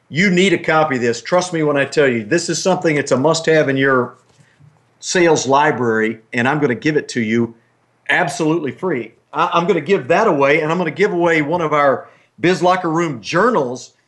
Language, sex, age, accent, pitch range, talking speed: English, male, 50-69, American, 130-175 Hz, 215 wpm